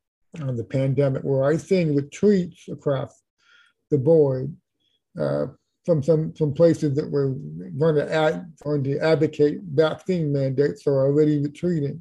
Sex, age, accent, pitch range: male, 50-69, American, 145-170 Hz